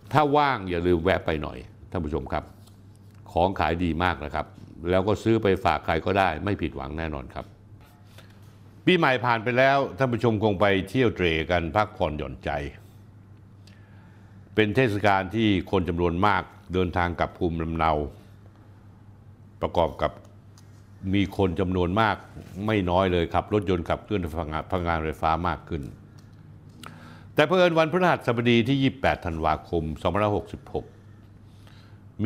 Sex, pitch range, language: male, 90-110 Hz, Thai